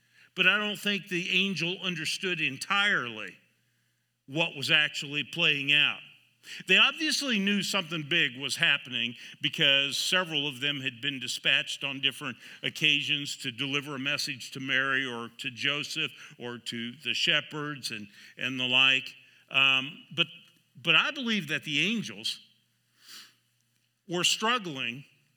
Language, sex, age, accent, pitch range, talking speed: English, male, 50-69, American, 135-175 Hz, 135 wpm